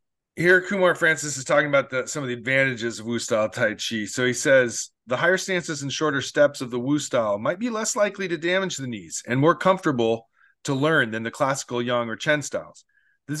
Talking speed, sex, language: 210 wpm, male, English